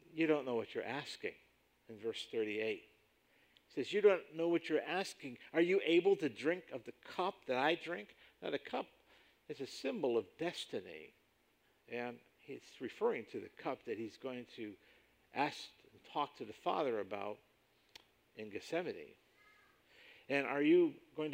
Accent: American